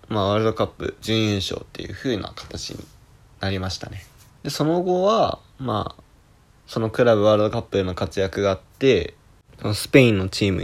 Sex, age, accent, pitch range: male, 20-39, native, 95-120 Hz